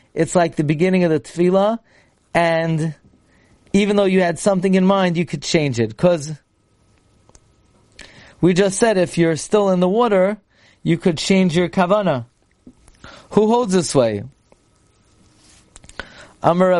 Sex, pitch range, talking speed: male, 140-185 Hz, 140 wpm